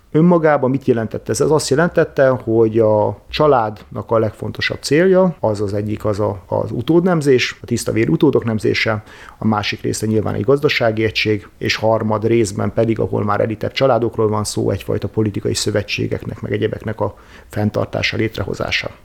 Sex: male